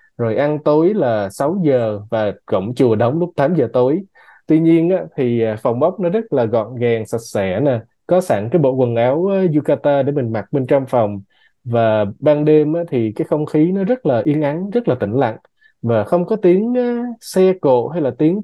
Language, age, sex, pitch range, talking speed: Vietnamese, 20-39, male, 115-160 Hz, 220 wpm